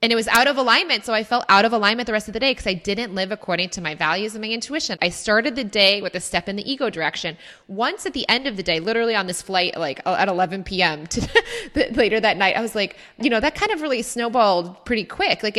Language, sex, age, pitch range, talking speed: English, female, 20-39, 185-235 Hz, 270 wpm